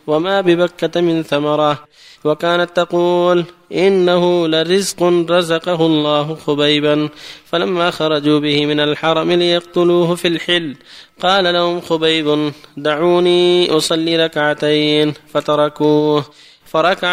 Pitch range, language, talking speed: 150-175 Hz, Arabic, 95 wpm